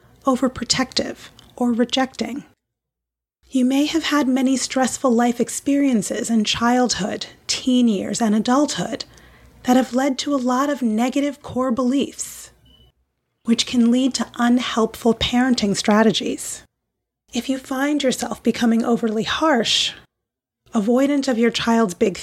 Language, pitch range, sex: English, 230-265 Hz, female